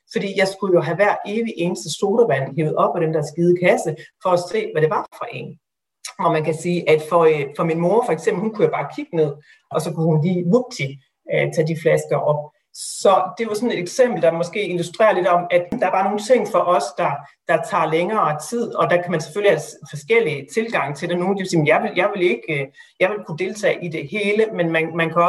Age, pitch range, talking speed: 40-59, 155-195 Hz, 255 wpm